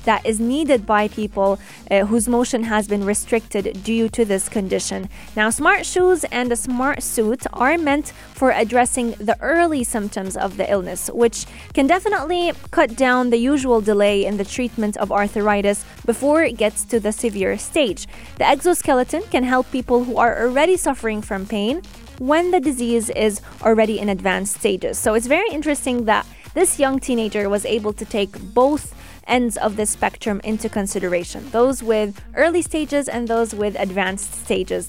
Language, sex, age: English, female, 20-39